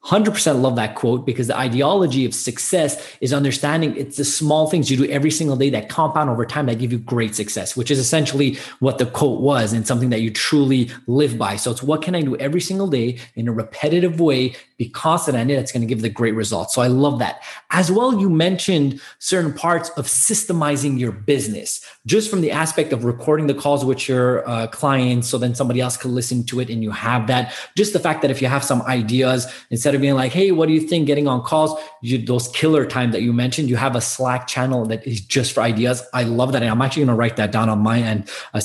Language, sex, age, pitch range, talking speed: English, male, 30-49, 115-150 Hz, 240 wpm